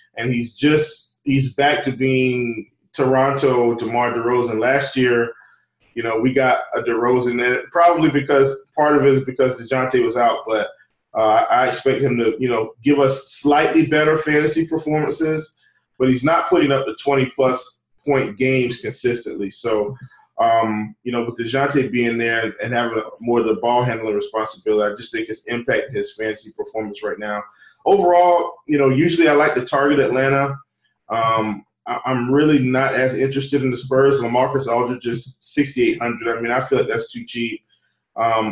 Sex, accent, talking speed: male, American, 175 wpm